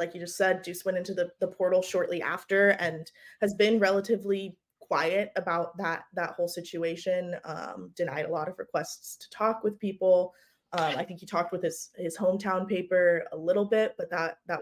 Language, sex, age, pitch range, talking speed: English, female, 20-39, 175-210 Hz, 200 wpm